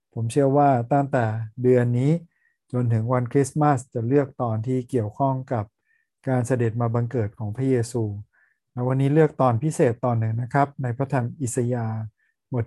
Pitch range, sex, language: 120-140 Hz, male, Thai